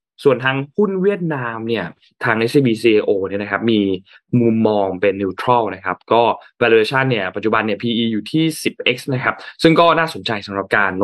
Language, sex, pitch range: Thai, male, 105-145 Hz